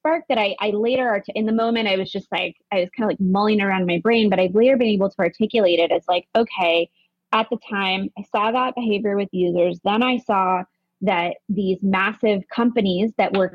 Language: English